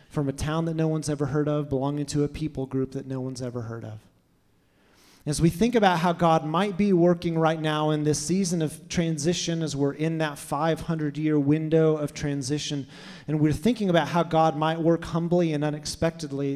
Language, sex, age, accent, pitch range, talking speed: English, male, 30-49, American, 135-160 Hz, 200 wpm